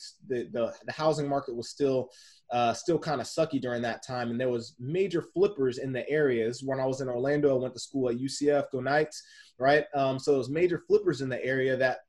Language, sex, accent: English, male, American